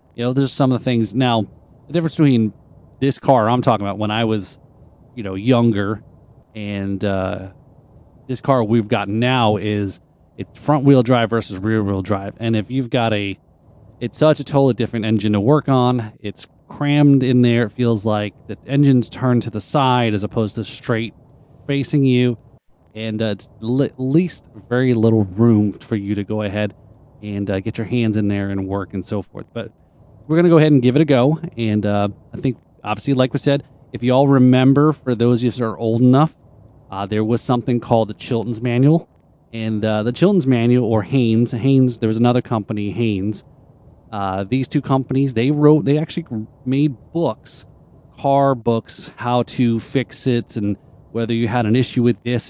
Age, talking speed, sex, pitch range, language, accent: 30-49, 195 wpm, male, 110-135 Hz, English, American